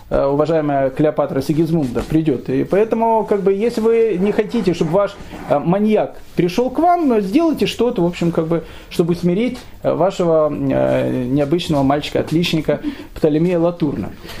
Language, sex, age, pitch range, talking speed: Russian, male, 30-49, 150-215 Hz, 135 wpm